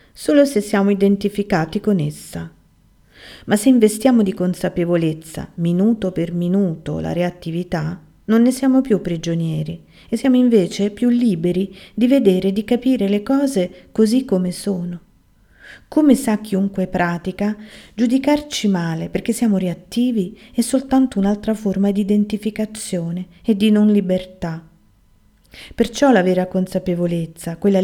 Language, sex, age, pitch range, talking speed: Italian, female, 40-59, 175-225 Hz, 130 wpm